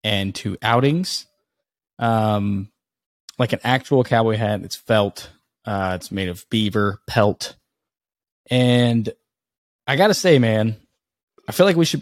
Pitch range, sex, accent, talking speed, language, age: 105-130 Hz, male, American, 140 wpm, English, 10-29